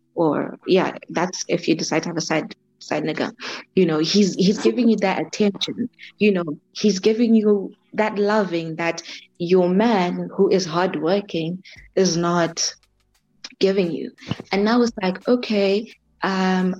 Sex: female